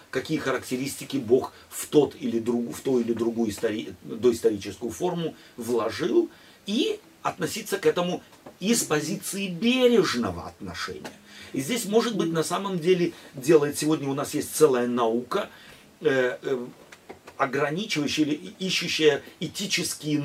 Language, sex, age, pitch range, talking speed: Russian, male, 40-59, 130-195 Hz, 120 wpm